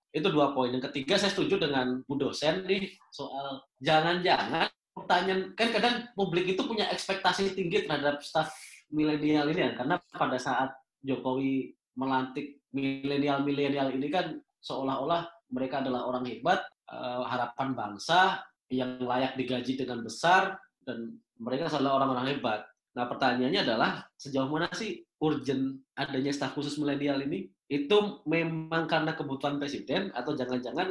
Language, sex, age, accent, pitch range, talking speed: Indonesian, male, 20-39, native, 130-165 Hz, 135 wpm